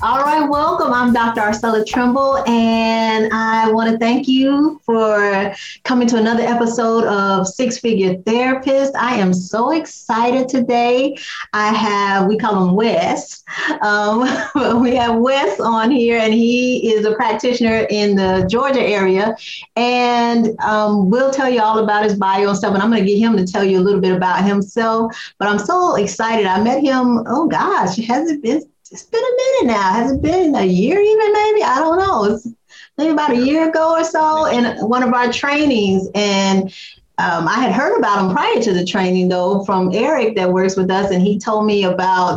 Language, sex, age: English, female, 30-49